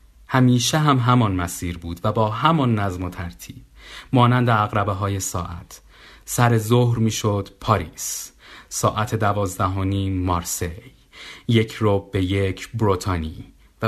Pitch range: 90-115 Hz